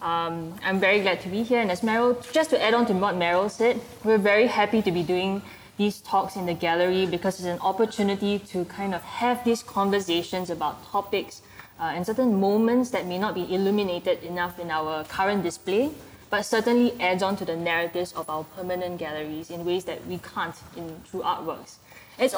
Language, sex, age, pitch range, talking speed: English, female, 20-39, 170-220 Hz, 200 wpm